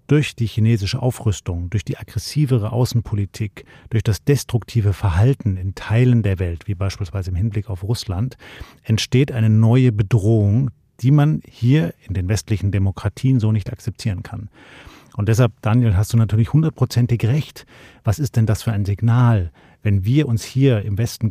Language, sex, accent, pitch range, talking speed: German, male, German, 105-130 Hz, 165 wpm